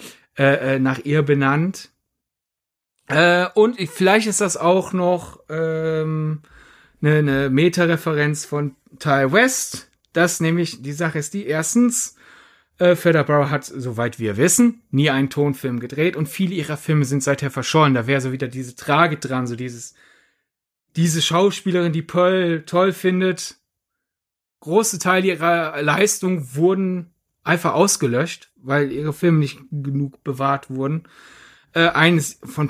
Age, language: 30-49, German